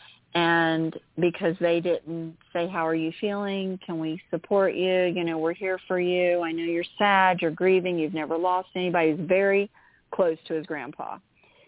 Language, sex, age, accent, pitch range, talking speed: English, female, 40-59, American, 165-200 Hz, 180 wpm